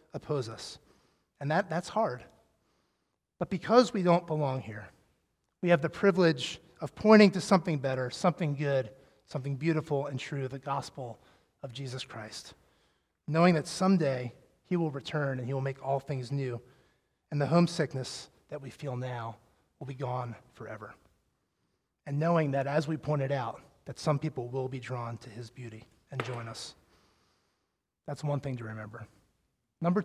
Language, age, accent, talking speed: English, 30-49, American, 160 wpm